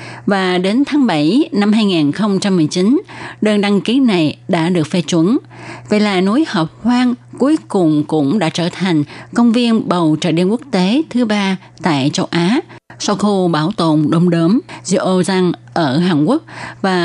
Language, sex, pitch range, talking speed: Vietnamese, female, 165-215 Hz, 170 wpm